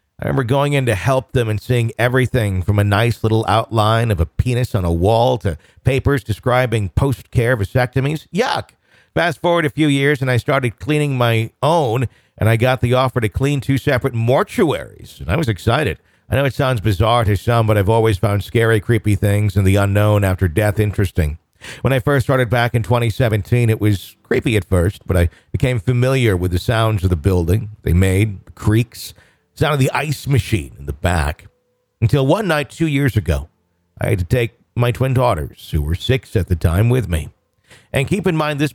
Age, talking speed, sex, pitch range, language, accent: 50-69, 205 wpm, male, 100-130 Hz, English, American